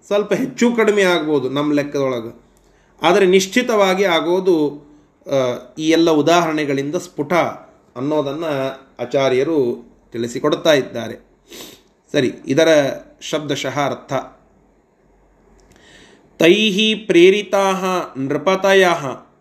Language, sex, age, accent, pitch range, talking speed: Kannada, male, 30-49, native, 150-190 Hz, 75 wpm